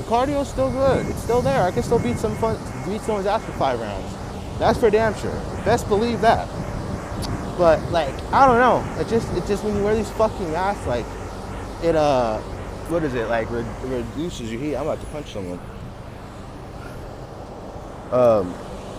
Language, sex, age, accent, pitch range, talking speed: English, male, 20-39, American, 120-200 Hz, 175 wpm